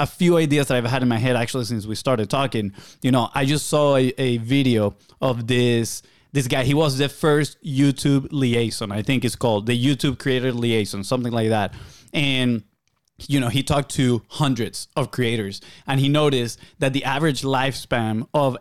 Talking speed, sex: 195 wpm, male